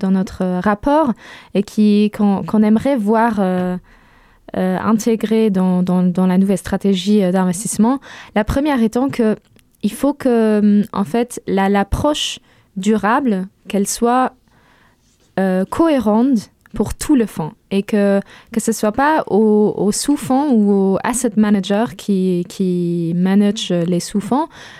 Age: 20-39